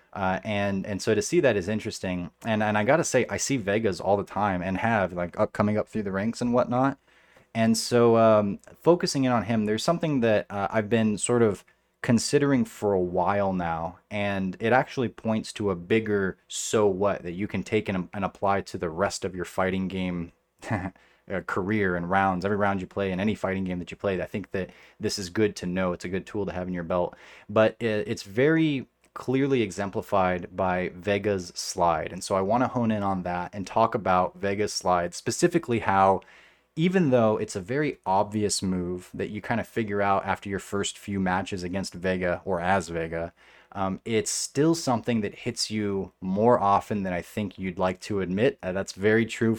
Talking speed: 210 wpm